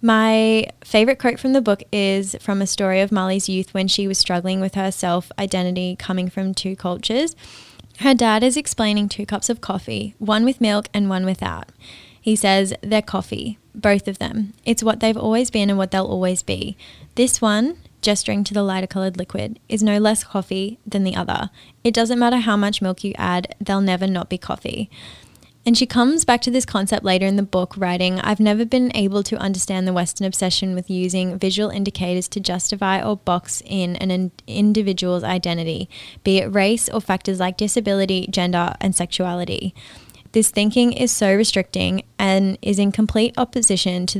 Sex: female